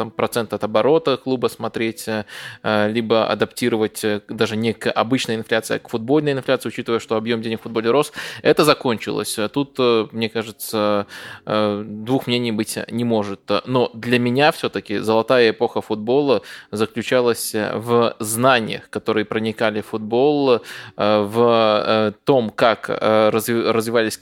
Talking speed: 125 wpm